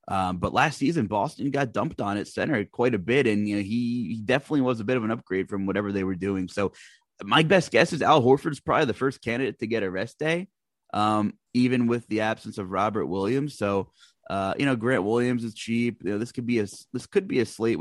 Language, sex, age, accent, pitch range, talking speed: English, male, 20-39, American, 100-125 Hz, 245 wpm